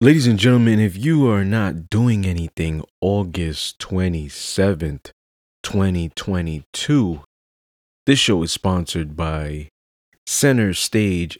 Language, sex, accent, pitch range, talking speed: English, male, American, 80-105 Hz, 100 wpm